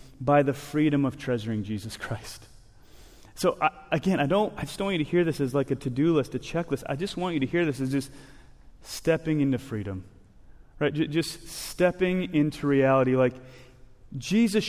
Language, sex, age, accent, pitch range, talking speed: English, male, 30-49, American, 130-185 Hz, 190 wpm